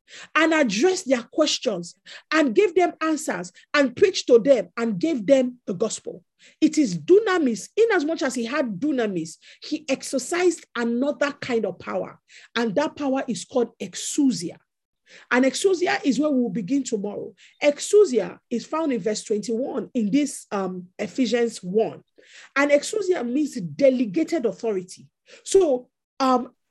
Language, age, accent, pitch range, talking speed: English, 40-59, Nigerian, 230-315 Hz, 145 wpm